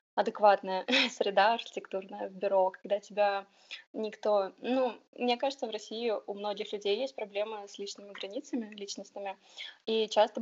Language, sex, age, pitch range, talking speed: Russian, female, 20-39, 200-230 Hz, 135 wpm